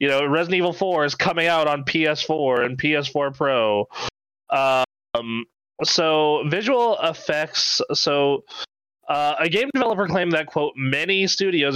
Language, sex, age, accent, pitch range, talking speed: English, male, 20-39, American, 135-165 Hz, 140 wpm